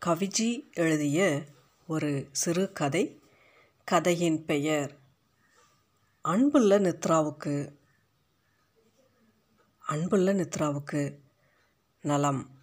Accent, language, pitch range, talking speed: native, Tamil, 145-195 Hz, 55 wpm